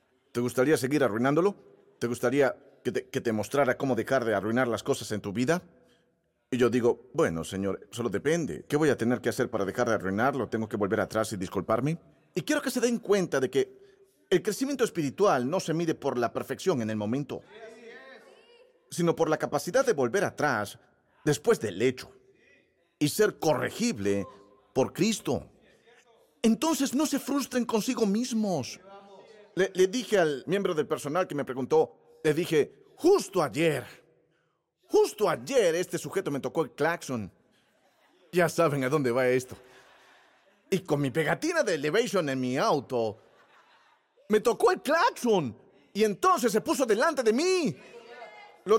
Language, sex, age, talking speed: Spanish, male, 40-59, 160 wpm